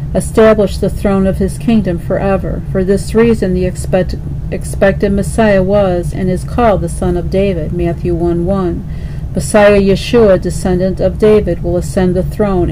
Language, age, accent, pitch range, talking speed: English, 50-69, American, 170-195 Hz, 160 wpm